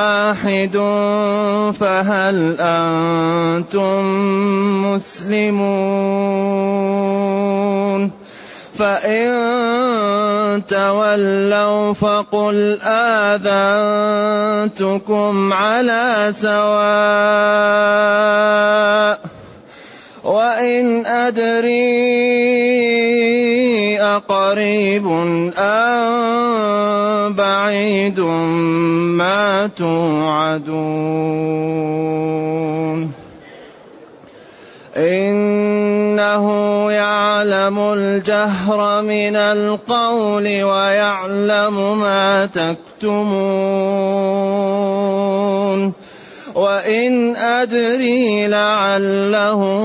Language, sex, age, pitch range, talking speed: Arabic, male, 30-49, 185-210 Hz, 35 wpm